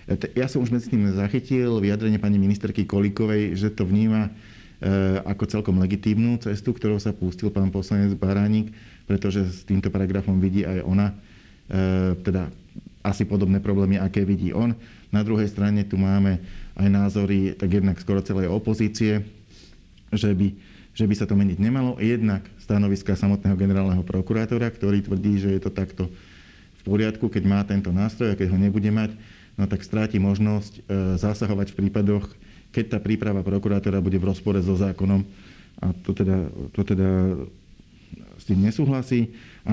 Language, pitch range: Slovak, 95-105 Hz